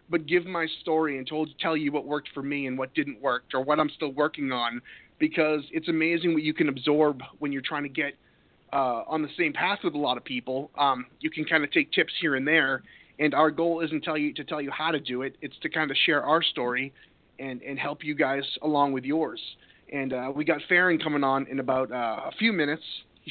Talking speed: 245 wpm